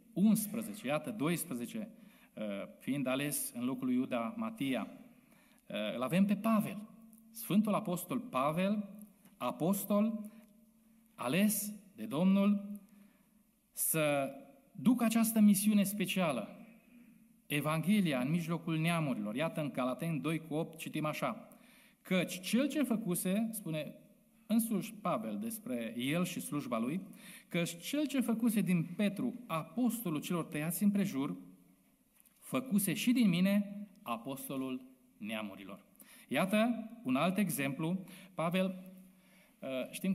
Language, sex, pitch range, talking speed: Romanian, male, 160-225 Hz, 110 wpm